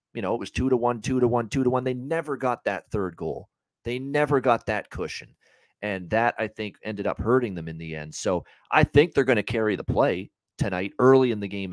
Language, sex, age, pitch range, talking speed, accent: English, male, 40-59, 95-125 Hz, 250 wpm, American